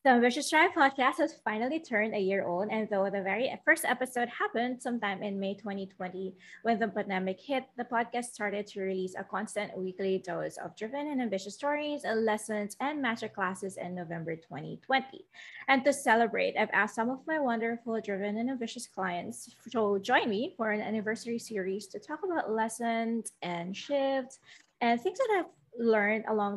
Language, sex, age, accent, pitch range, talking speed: English, female, 20-39, Filipino, 195-250 Hz, 175 wpm